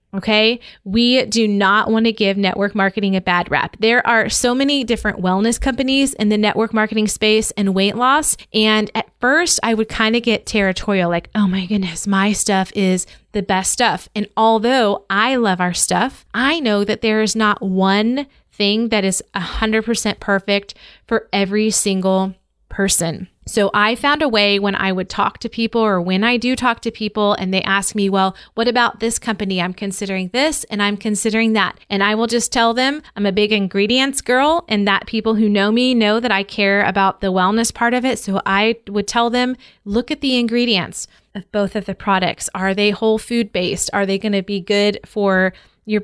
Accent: American